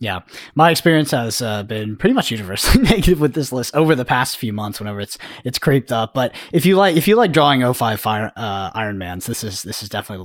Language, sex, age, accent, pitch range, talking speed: English, male, 10-29, American, 105-140 Hz, 235 wpm